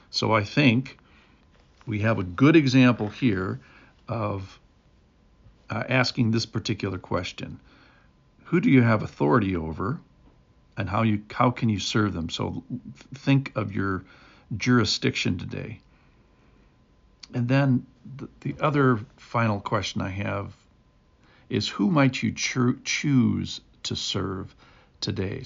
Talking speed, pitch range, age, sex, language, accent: 125 wpm, 100-125 Hz, 60-79, male, English, American